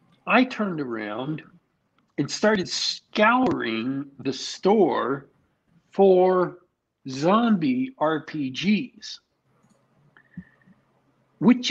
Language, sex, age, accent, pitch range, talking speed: English, male, 50-69, American, 130-210 Hz, 60 wpm